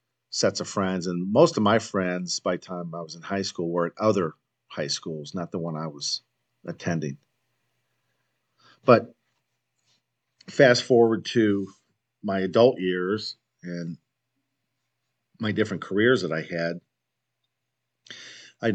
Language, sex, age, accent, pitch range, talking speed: English, male, 50-69, American, 90-115 Hz, 135 wpm